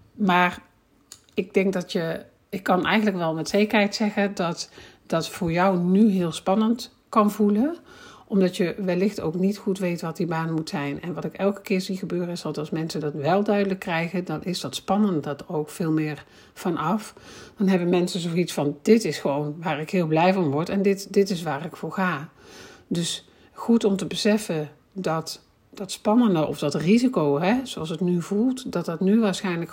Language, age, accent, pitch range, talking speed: Dutch, 50-69, Dutch, 160-200 Hz, 200 wpm